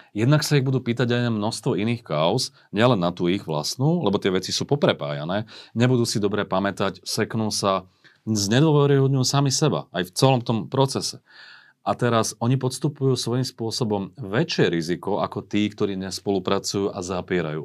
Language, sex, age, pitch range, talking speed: Slovak, male, 40-59, 95-130 Hz, 160 wpm